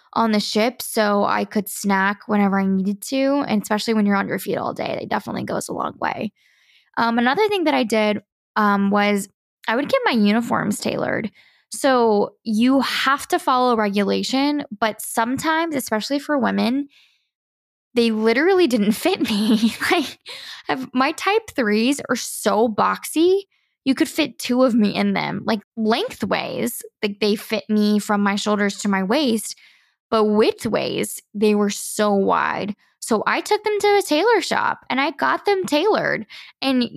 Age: 10-29